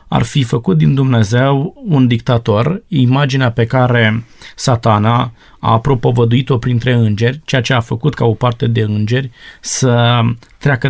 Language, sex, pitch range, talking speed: Romanian, male, 115-140 Hz, 145 wpm